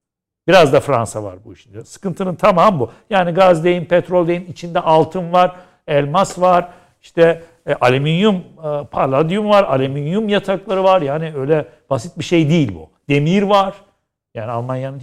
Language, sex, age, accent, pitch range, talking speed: Turkish, male, 60-79, native, 125-180 Hz, 155 wpm